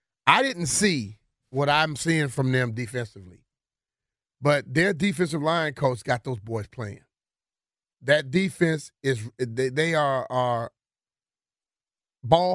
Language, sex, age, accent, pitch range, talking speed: English, male, 30-49, American, 130-180 Hz, 115 wpm